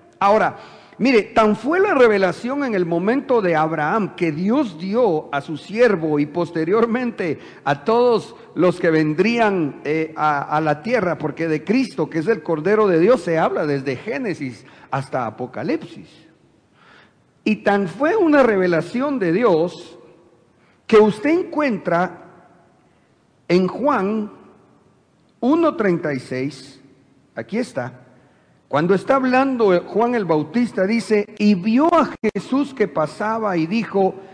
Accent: Mexican